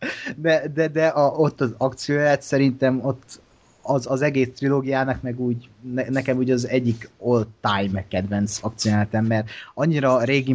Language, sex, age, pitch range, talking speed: Hungarian, male, 30-49, 110-130 Hz, 160 wpm